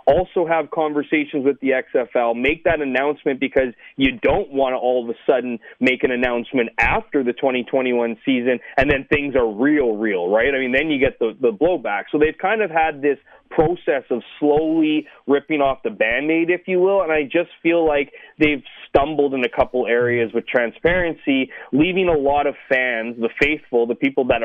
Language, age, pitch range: English, 30-49, 125-165 Hz